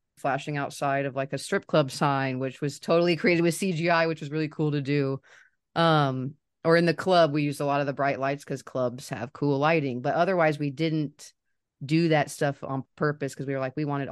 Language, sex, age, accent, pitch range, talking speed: English, female, 30-49, American, 135-160 Hz, 225 wpm